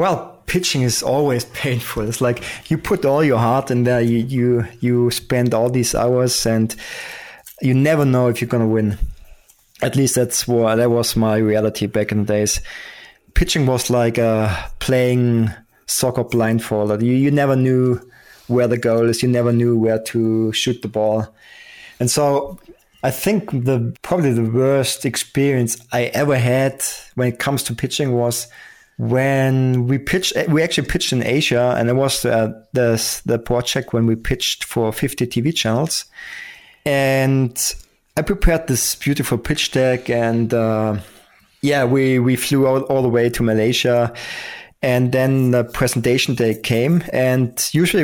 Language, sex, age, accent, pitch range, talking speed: English, male, 20-39, German, 115-135 Hz, 165 wpm